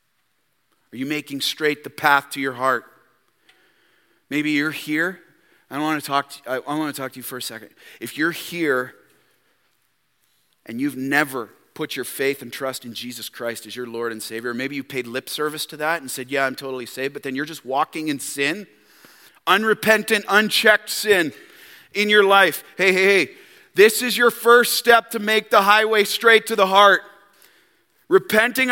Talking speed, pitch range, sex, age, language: 175 wpm, 150-235 Hz, male, 40-59, English